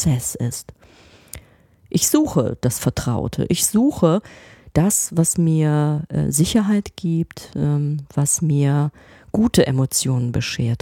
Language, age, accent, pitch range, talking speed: German, 30-49, German, 140-180 Hz, 95 wpm